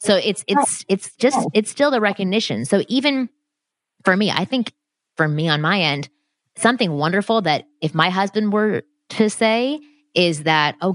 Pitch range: 150-210 Hz